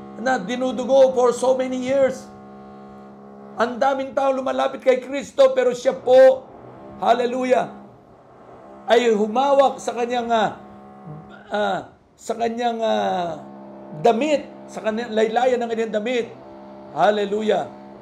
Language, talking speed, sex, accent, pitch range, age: Filipino, 110 wpm, male, native, 170-240 Hz, 50-69